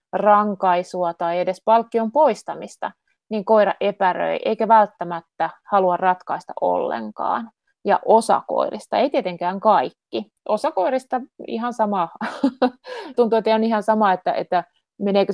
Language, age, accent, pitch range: Finnish, 30-49, native, 180-225 Hz